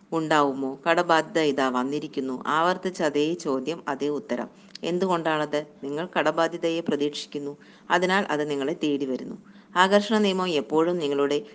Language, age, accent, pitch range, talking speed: Malayalam, 50-69, native, 145-180 Hz, 115 wpm